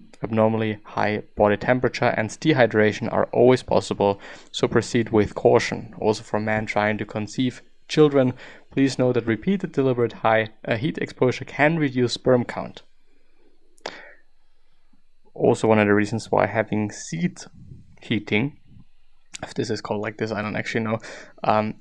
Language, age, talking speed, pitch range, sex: English, 20-39, 145 wpm, 110-130 Hz, male